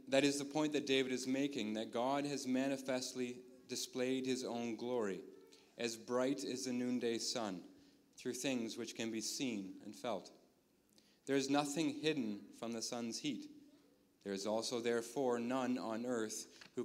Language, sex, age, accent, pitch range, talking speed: English, male, 30-49, American, 110-130 Hz, 165 wpm